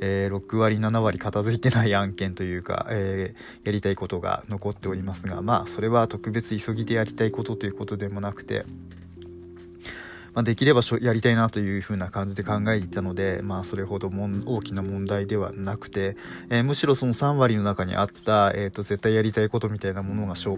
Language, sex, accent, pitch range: Japanese, male, native, 95-115 Hz